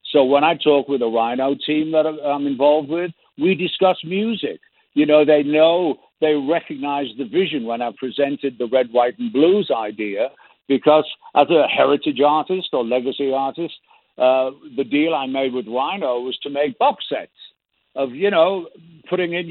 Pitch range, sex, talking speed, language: 130-155 Hz, male, 175 wpm, English